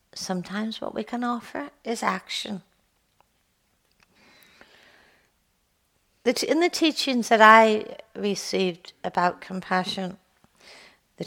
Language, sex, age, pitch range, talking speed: English, female, 60-79, 185-230 Hz, 85 wpm